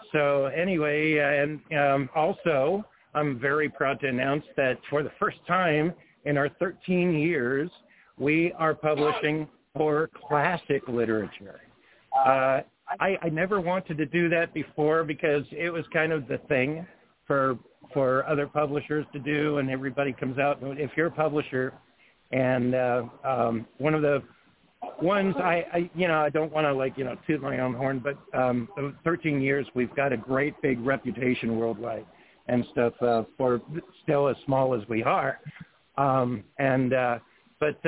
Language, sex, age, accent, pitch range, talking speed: English, male, 50-69, American, 135-160 Hz, 160 wpm